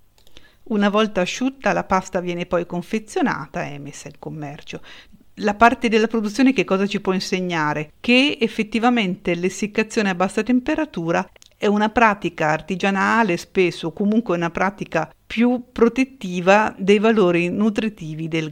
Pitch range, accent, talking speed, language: 165-215 Hz, native, 135 wpm, Italian